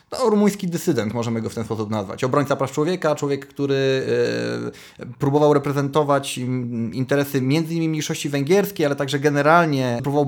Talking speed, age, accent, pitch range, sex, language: 145 wpm, 30-49, native, 120-155 Hz, male, Polish